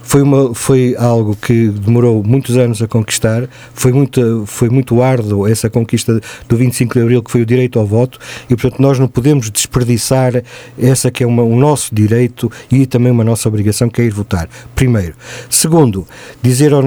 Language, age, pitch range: Portuguese, 50-69, 115-135 Hz